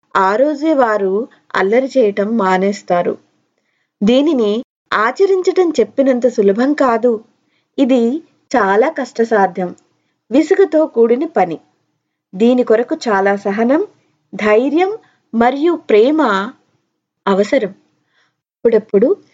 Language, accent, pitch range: Telugu, native, 205-285 Hz